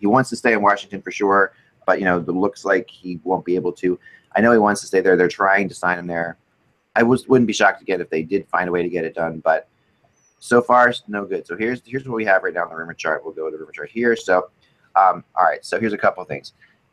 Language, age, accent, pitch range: English, 30-49, American, 90-120 Hz